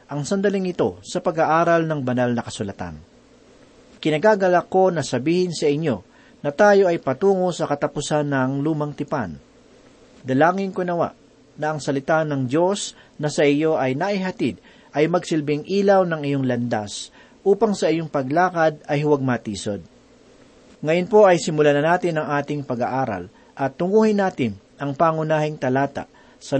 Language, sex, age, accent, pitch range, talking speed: Filipino, male, 40-59, native, 135-175 Hz, 150 wpm